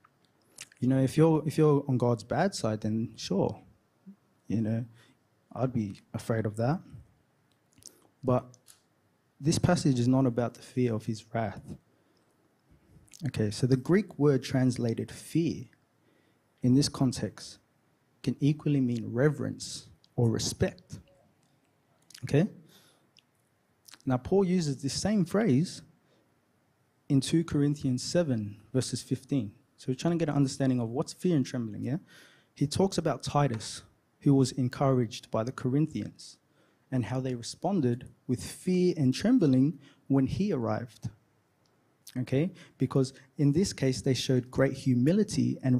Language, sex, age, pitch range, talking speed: English, male, 20-39, 120-145 Hz, 135 wpm